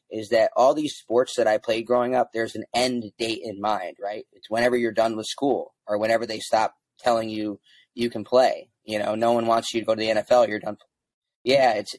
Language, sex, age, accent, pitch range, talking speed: English, male, 20-39, American, 105-125 Hz, 235 wpm